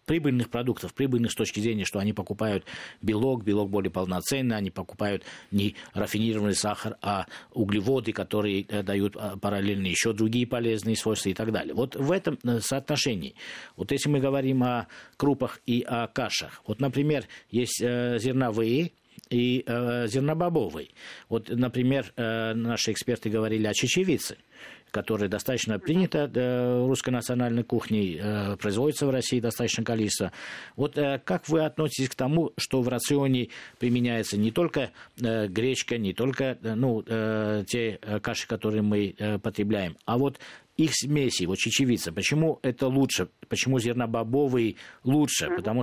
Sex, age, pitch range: male, 50-69, 105-130 Hz